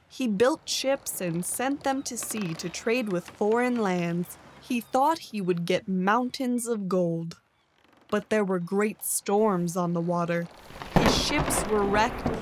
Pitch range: 180-255 Hz